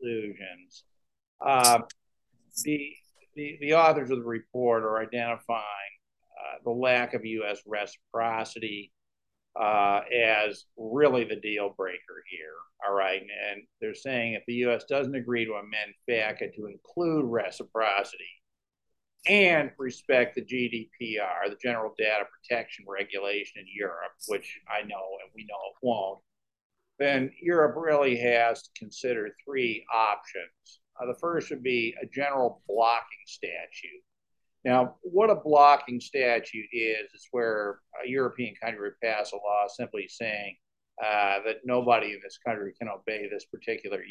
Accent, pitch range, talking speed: American, 105-135 Hz, 140 wpm